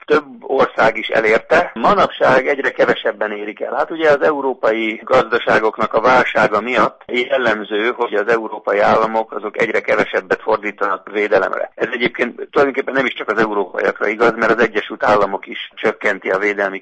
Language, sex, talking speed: Hungarian, male, 155 wpm